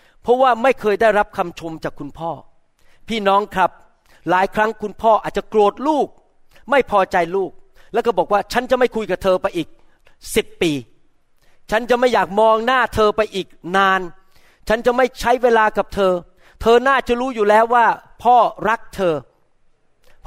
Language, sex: Thai, male